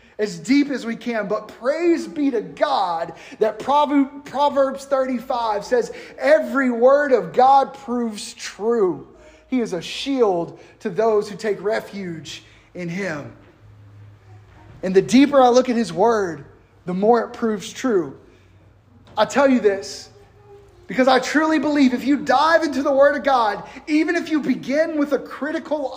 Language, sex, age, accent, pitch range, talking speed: English, male, 30-49, American, 185-260 Hz, 155 wpm